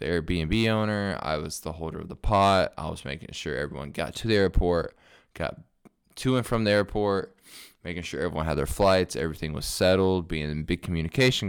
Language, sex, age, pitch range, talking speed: English, male, 20-39, 80-100 Hz, 195 wpm